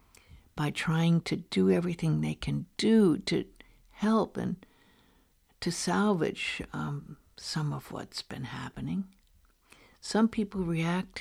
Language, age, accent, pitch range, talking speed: English, 60-79, American, 145-200 Hz, 120 wpm